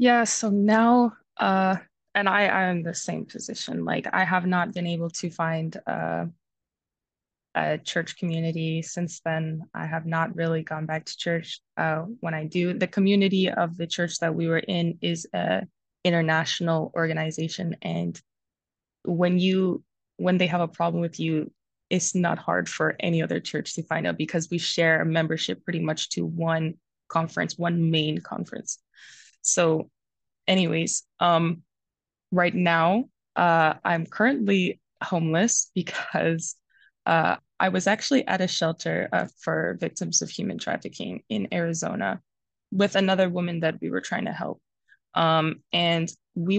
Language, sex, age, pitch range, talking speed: English, female, 20-39, 160-185 Hz, 155 wpm